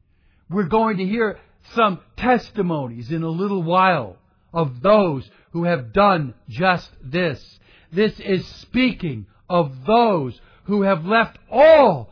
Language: English